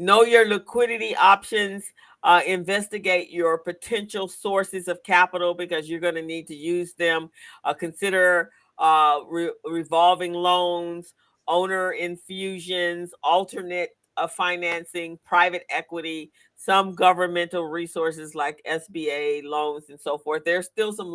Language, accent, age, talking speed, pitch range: English, American, 50-69, 120 wpm, 165-195 Hz